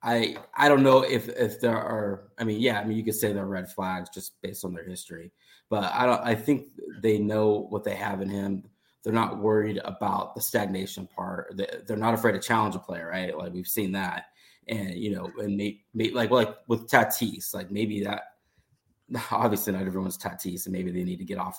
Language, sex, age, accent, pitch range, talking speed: English, male, 20-39, American, 95-110 Hz, 220 wpm